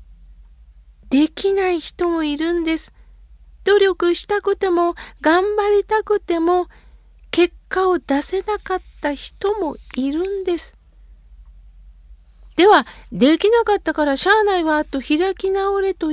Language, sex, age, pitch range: Japanese, female, 50-69, 255-365 Hz